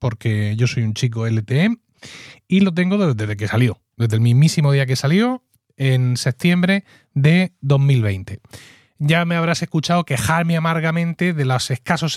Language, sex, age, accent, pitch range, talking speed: Spanish, male, 30-49, Spanish, 125-175 Hz, 155 wpm